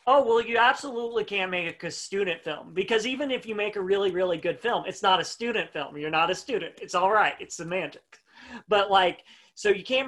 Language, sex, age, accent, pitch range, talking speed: English, male, 40-59, American, 180-230 Hz, 225 wpm